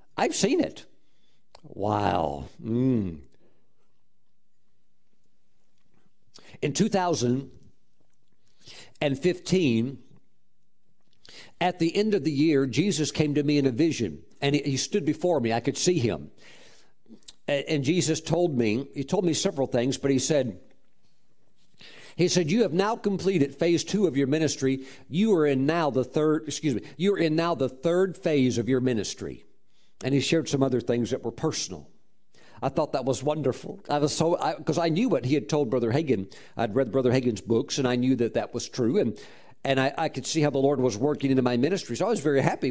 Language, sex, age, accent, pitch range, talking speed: English, male, 50-69, American, 125-165 Hz, 180 wpm